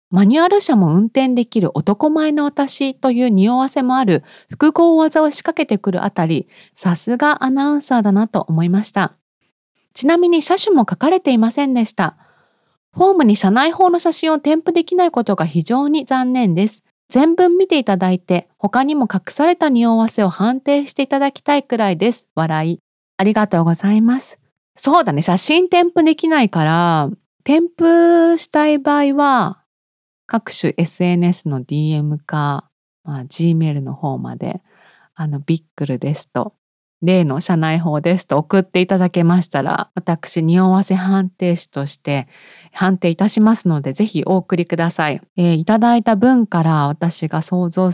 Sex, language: female, Japanese